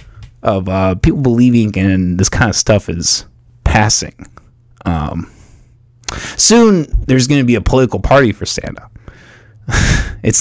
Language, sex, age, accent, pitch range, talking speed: English, male, 20-39, American, 100-120 Hz, 135 wpm